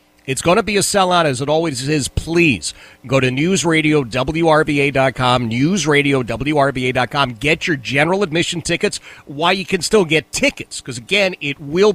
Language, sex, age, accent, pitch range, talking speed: English, male, 40-59, American, 130-185 Hz, 150 wpm